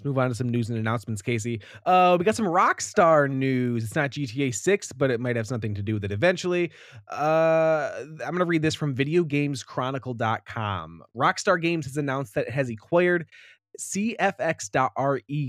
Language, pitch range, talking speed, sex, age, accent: English, 115-155 Hz, 170 wpm, male, 20-39, American